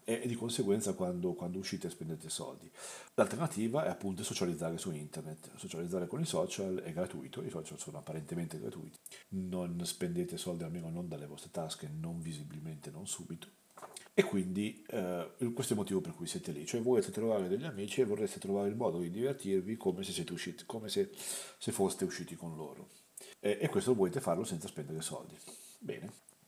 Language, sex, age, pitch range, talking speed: Italian, male, 40-59, 85-135 Hz, 185 wpm